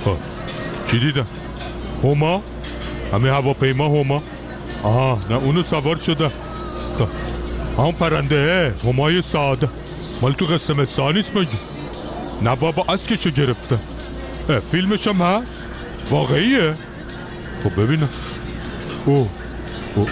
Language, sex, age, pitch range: Persian, male, 60-79, 115-150 Hz